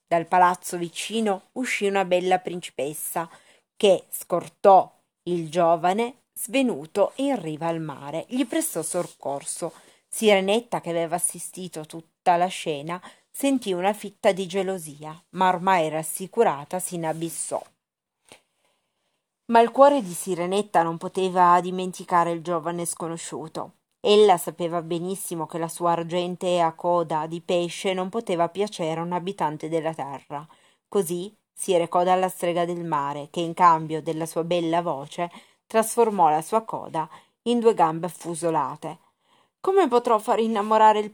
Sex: female